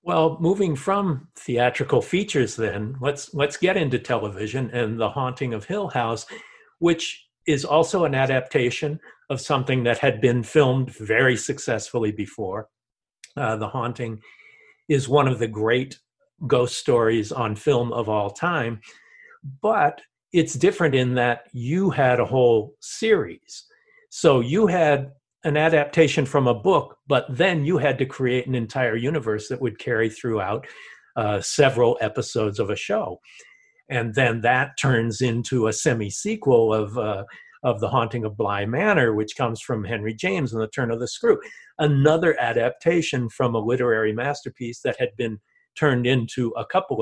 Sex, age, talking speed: male, 50-69, 155 wpm